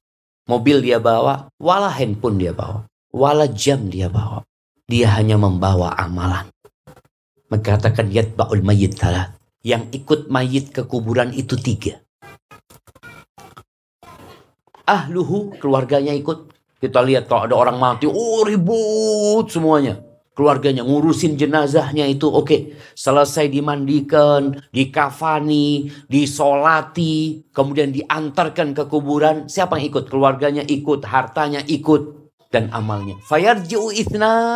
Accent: native